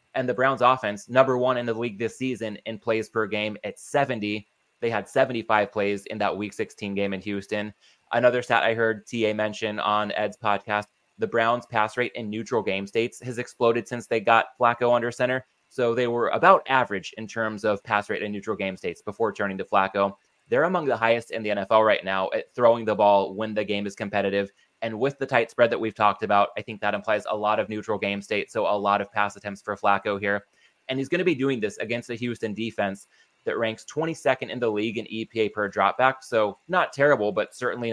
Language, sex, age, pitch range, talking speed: English, male, 20-39, 105-120 Hz, 225 wpm